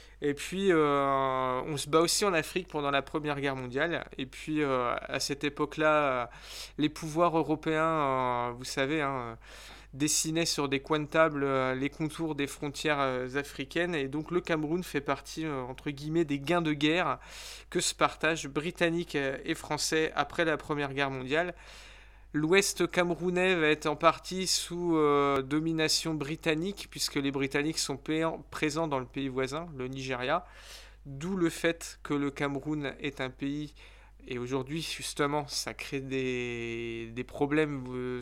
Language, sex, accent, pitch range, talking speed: French, male, French, 135-160 Hz, 160 wpm